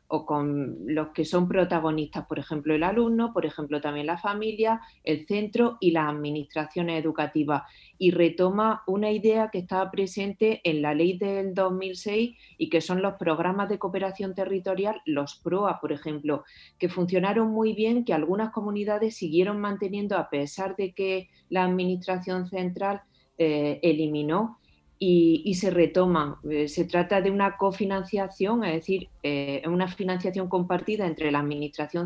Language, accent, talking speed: Spanish, Spanish, 150 wpm